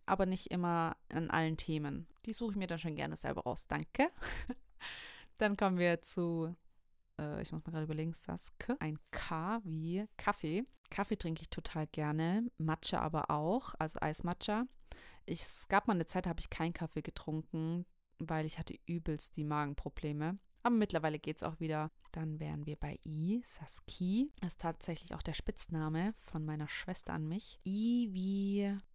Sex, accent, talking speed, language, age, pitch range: female, German, 170 wpm, German, 30-49, 160-195 Hz